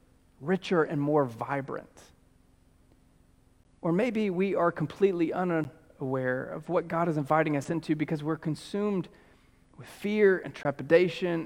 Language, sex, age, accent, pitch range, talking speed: English, male, 40-59, American, 140-180 Hz, 125 wpm